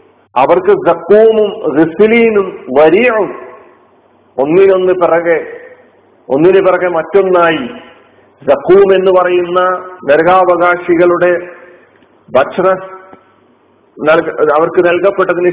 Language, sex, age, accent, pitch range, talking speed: Malayalam, male, 50-69, native, 155-190 Hz, 60 wpm